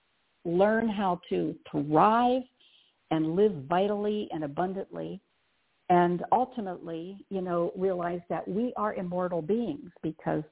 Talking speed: 115 wpm